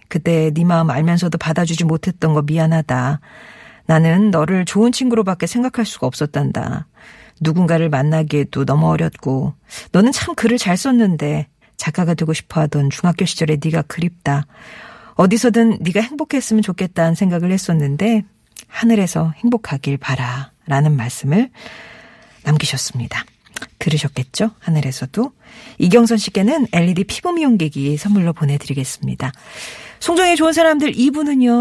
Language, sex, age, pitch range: Korean, female, 40-59, 145-215 Hz